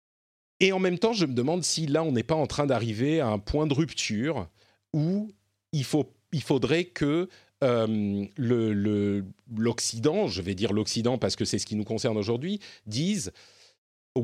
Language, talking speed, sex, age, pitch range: French, 185 wpm, male, 40-59, 110-165 Hz